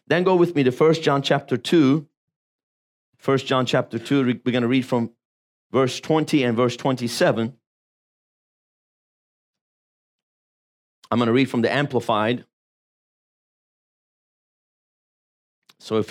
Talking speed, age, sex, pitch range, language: 120 wpm, 30-49, male, 120-150 Hz, English